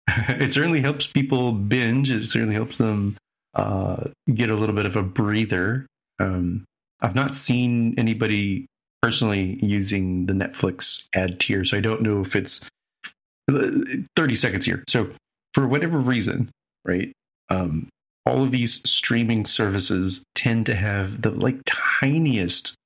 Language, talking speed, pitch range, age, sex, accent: English, 140 wpm, 105-130 Hz, 30-49, male, American